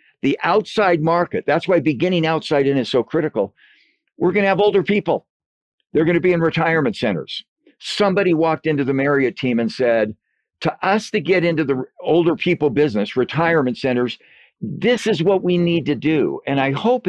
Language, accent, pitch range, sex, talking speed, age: English, American, 130-175 Hz, male, 185 wpm, 60-79